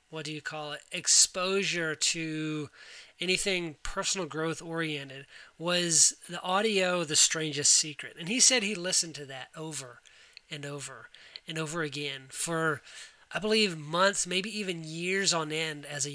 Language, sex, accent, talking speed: English, male, American, 150 wpm